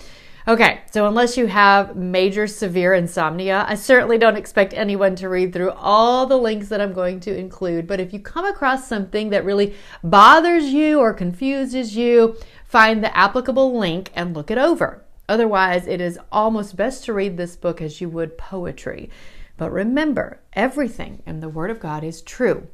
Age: 40-59